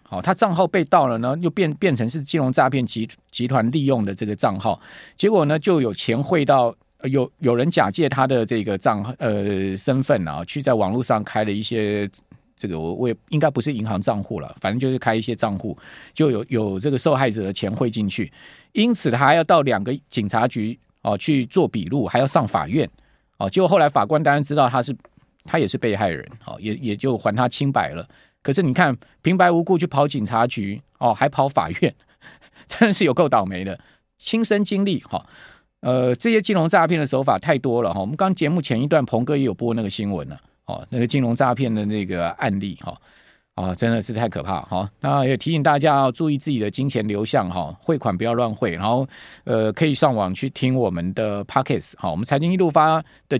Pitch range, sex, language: 110-150 Hz, male, Chinese